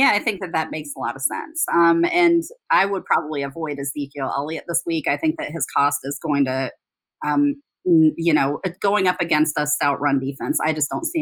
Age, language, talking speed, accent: 30-49, English, 230 wpm, American